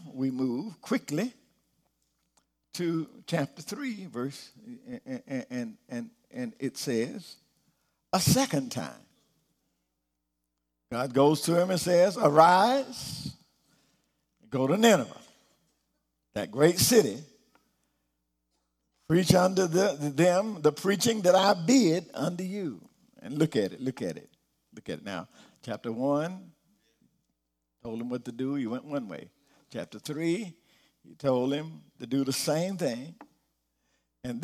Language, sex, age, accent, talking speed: English, male, 50-69, American, 125 wpm